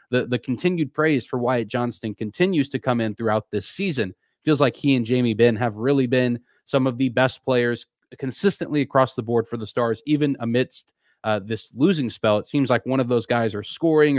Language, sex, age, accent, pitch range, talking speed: English, male, 20-39, American, 110-135 Hz, 210 wpm